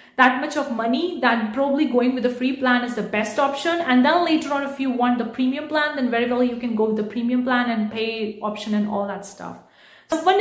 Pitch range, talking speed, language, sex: 220-270 Hz, 250 wpm, English, female